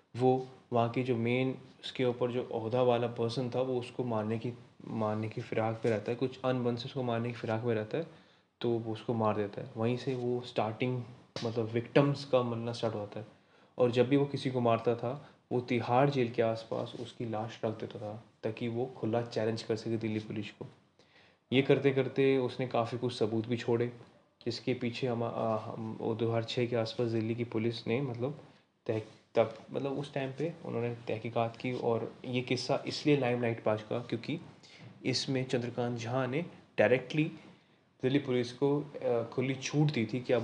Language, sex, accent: Hindi, male, native